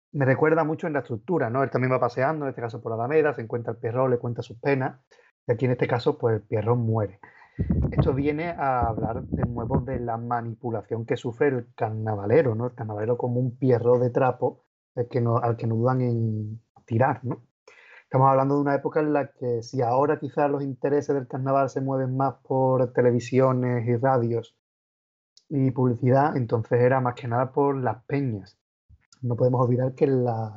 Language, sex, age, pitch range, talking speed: Spanish, male, 30-49, 120-135 Hz, 195 wpm